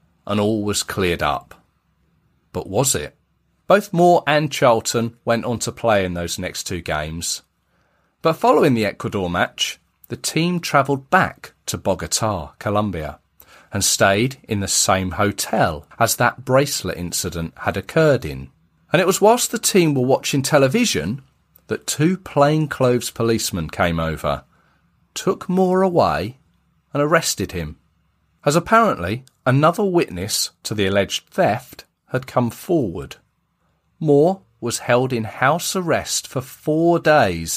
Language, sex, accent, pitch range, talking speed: English, male, British, 95-155 Hz, 140 wpm